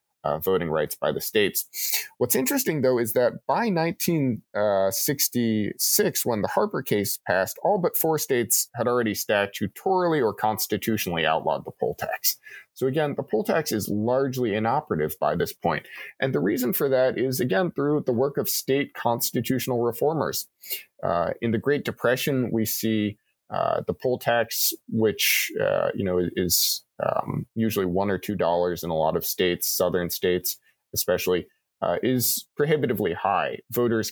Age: 30-49